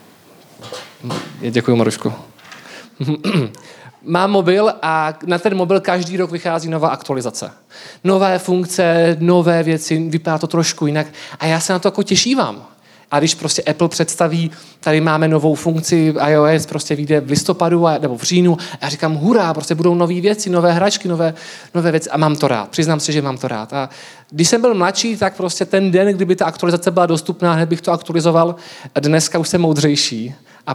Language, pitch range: Czech, 135-170 Hz